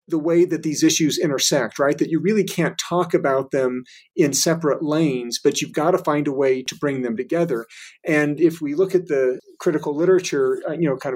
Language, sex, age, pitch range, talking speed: English, male, 40-59, 135-165 Hz, 210 wpm